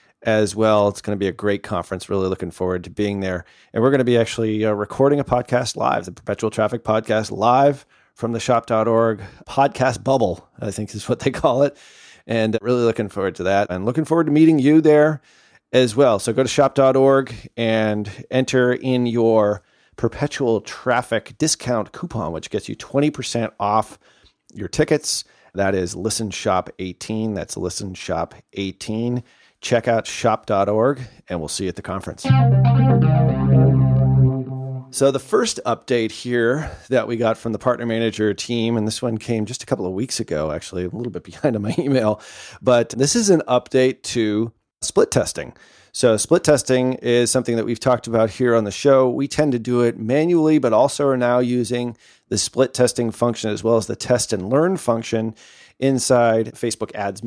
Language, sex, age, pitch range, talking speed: English, male, 40-59, 105-130 Hz, 180 wpm